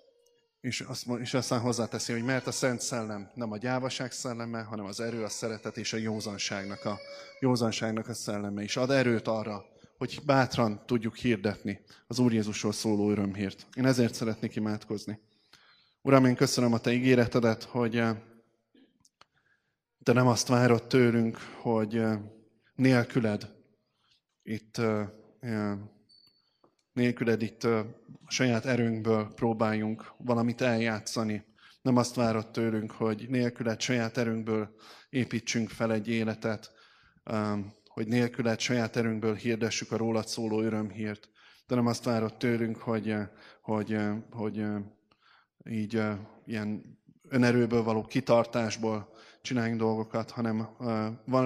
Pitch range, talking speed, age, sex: 110-120 Hz, 120 wpm, 20-39, male